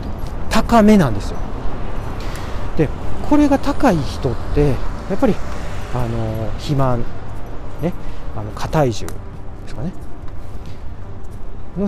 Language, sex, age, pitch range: Japanese, male, 40-59, 100-155 Hz